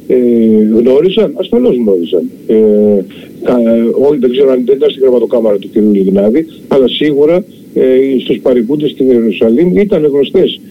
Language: Greek